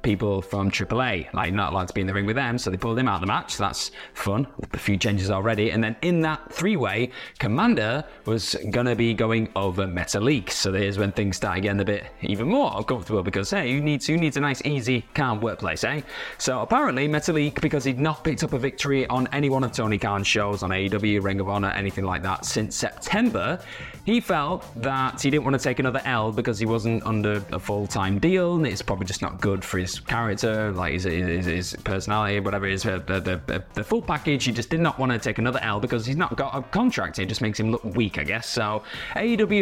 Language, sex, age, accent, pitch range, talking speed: English, male, 20-39, British, 100-135 Hz, 230 wpm